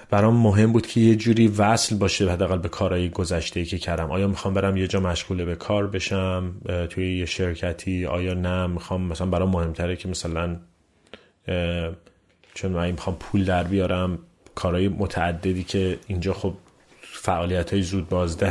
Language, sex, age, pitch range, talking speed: Persian, male, 30-49, 90-105 Hz, 160 wpm